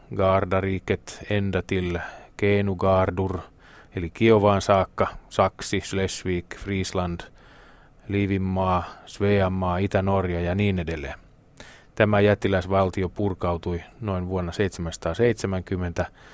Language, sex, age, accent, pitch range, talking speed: Finnish, male, 30-49, native, 90-100 Hz, 75 wpm